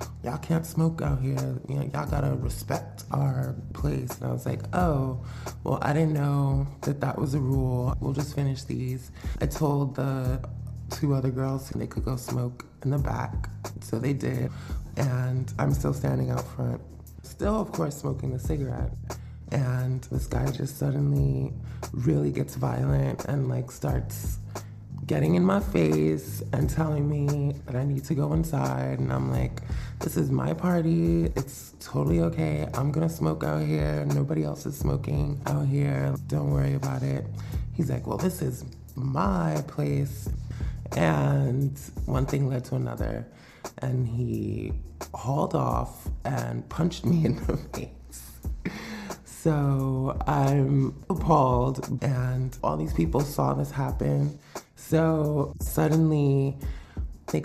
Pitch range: 105-140 Hz